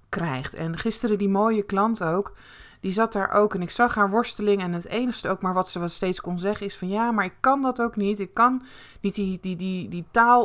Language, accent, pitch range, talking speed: Dutch, Dutch, 170-220 Hz, 255 wpm